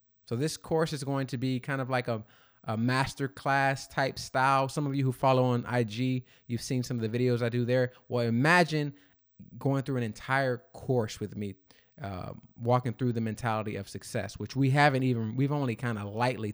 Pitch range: 110-135 Hz